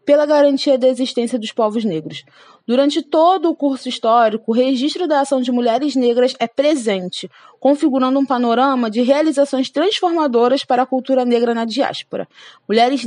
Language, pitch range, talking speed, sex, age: Portuguese, 245-290 Hz, 155 wpm, female, 20-39